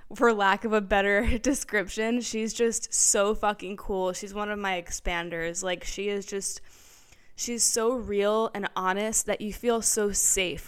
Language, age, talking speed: English, 10-29, 170 wpm